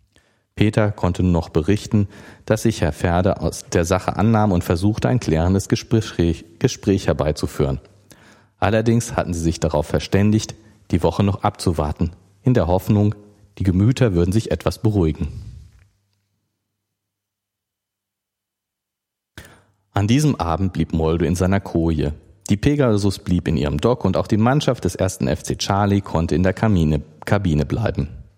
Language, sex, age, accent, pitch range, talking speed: German, male, 40-59, German, 80-105 Hz, 140 wpm